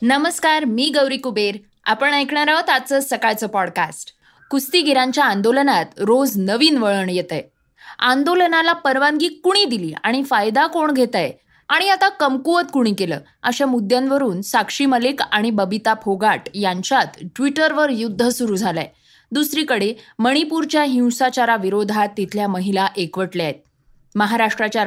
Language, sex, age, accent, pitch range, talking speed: Marathi, female, 20-39, native, 210-275 Hz, 115 wpm